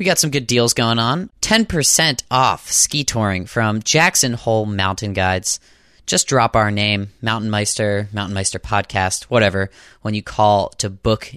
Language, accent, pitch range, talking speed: English, American, 100-130 Hz, 165 wpm